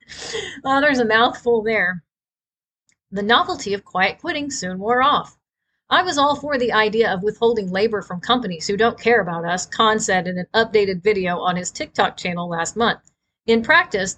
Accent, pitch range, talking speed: American, 185-260 Hz, 180 wpm